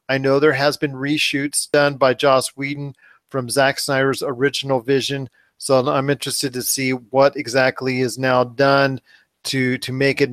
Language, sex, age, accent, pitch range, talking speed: English, male, 40-59, American, 130-145 Hz, 170 wpm